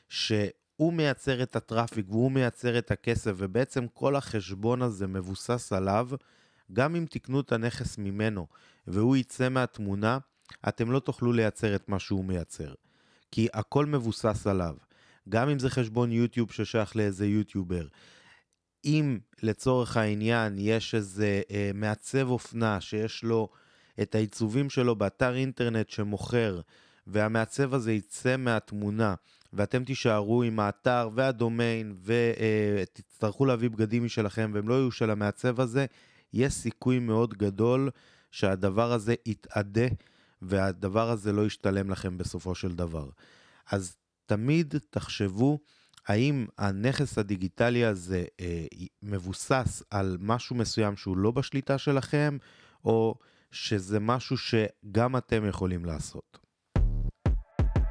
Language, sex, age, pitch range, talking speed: Hebrew, male, 20-39, 100-125 Hz, 120 wpm